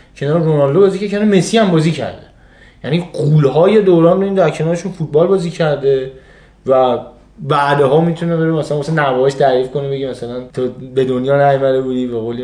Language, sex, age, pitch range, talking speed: Persian, male, 20-39, 135-210 Hz, 170 wpm